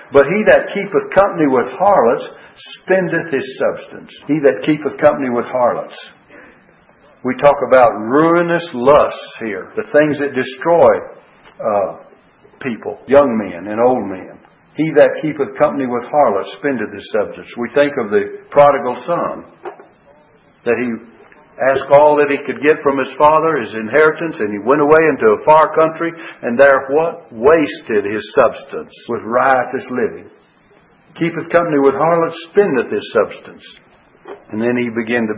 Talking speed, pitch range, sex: 155 wpm, 125-160 Hz, male